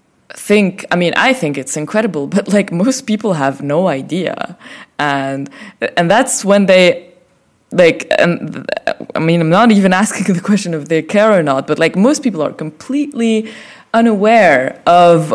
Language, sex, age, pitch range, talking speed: Arabic, female, 20-39, 155-220 Hz, 170 wpm